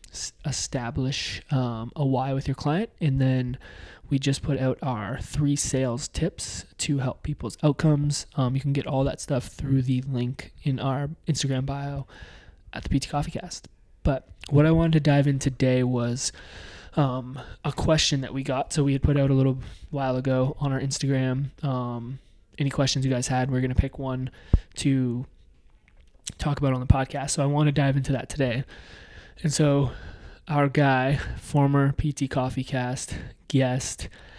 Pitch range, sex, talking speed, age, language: 125-140 Hz, male, 175 wpm, 20-39, English